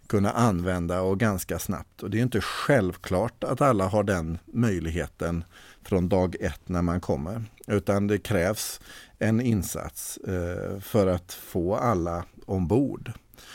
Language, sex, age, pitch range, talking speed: Swedish, male, 50-69, 95-115 Hz, 135 wpm